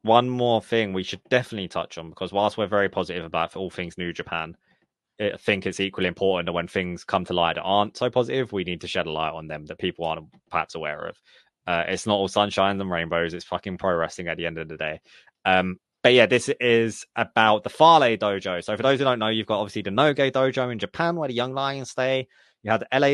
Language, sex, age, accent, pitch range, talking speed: English, male, 20-39, British, 95-125 Hz, 250 wpm